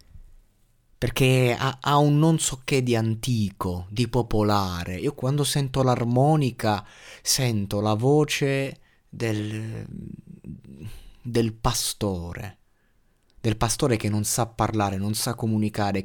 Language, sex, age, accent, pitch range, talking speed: Italian, male, 20-39, native, 100-125 Hz, 110 wpm